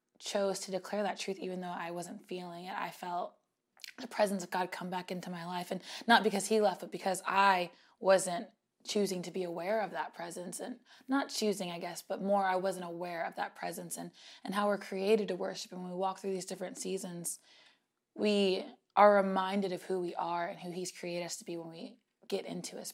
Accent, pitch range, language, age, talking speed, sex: American, 185-220 Hz, English, 20-39, 220 wpm, female